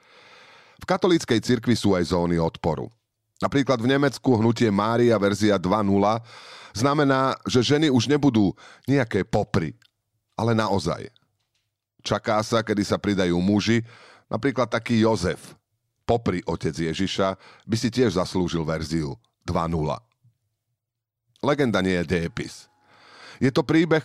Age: 40-59